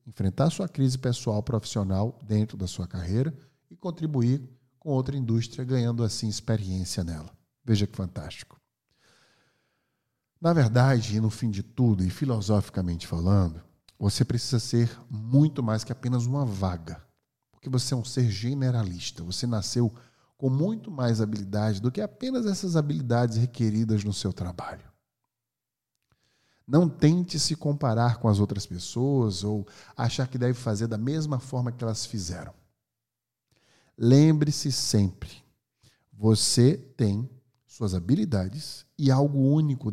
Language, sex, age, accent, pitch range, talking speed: Portuguese, male, 50-69, Brazilian, 105-135 Hz, 135 wpm